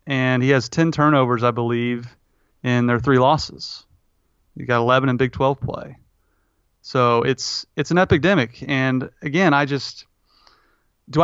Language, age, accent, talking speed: English, 30-49, American, 150 wpm